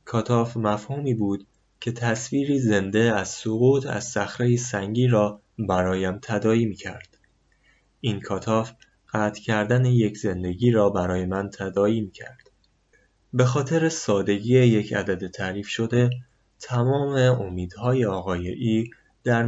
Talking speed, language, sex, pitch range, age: 115 wpm, Persian, male, 100-120 Hz, 20-39